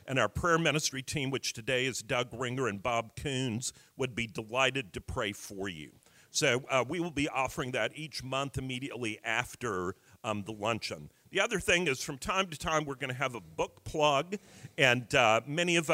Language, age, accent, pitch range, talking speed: English, 50-69, American, 120-150 Hz, 200 wpm